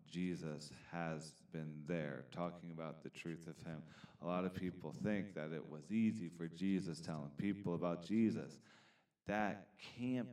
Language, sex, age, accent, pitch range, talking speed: English, male, 40-59, American, 80-100 Hz, 155 wpm